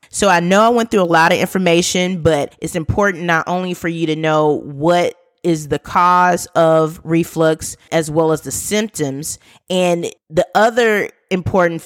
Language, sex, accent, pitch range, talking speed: English, female, American, 155-180 Hz, 170 wpm